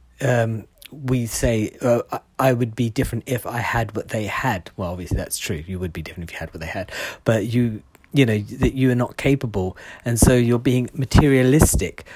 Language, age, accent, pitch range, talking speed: English, 40-59, British, 105-135 Hz, 205 wpm